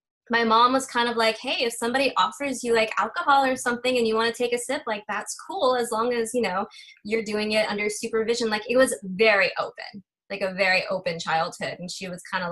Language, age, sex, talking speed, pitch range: English, 20-39, female, 240 wpm, 180-245 Hz